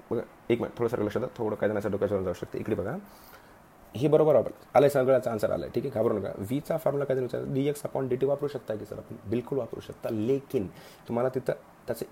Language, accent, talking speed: Hindi, native, 150 wpm